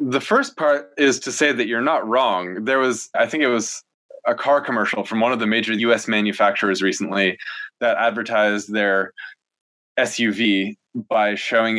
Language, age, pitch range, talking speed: English, 20-39, 105-140 Hz, 170 wpm